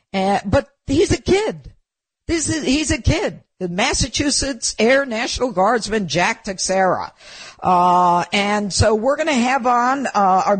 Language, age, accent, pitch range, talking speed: English, 50-69, American, 175-250 Hz, 145 wpm